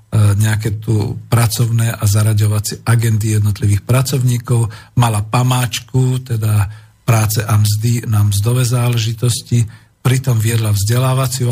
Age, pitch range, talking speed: 50-69, 105-125 Hz, 105 wpm